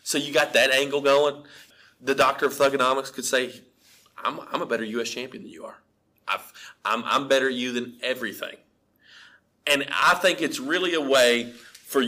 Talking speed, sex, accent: 180 wpm, male, American